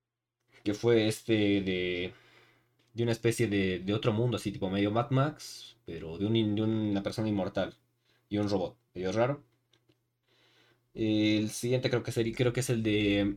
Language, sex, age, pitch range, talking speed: Spanish, male, 20-39, 105-125 Hz, 170 wpm